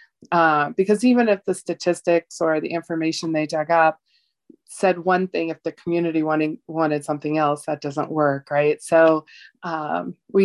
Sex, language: female, English